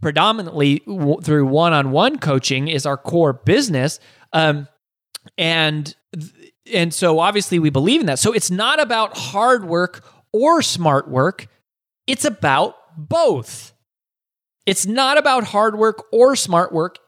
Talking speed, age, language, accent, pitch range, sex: 135 wpm, 20-39, English, American, 150-210 Hz, male